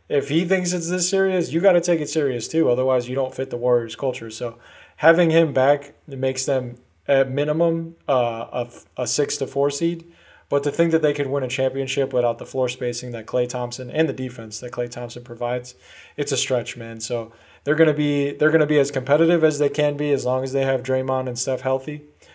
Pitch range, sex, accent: 120-140 Hz, male, American